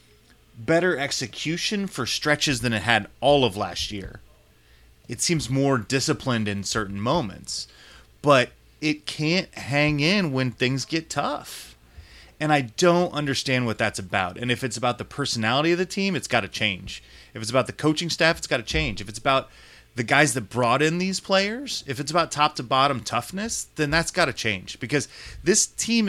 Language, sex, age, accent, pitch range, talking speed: English, male, 30-49, American, 110-150 Hz, 190 wpm